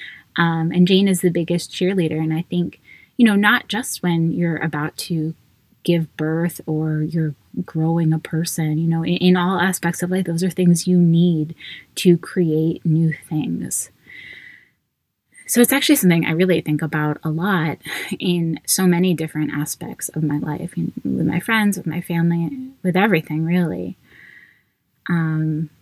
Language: English